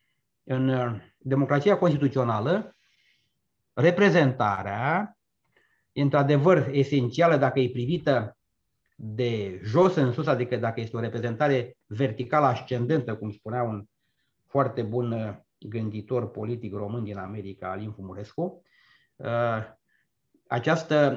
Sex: male